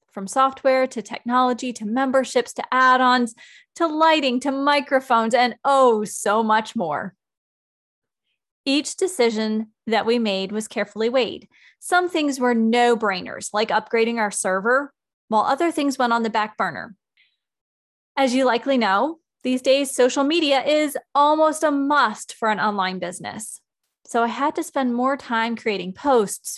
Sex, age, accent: female, 20-39, American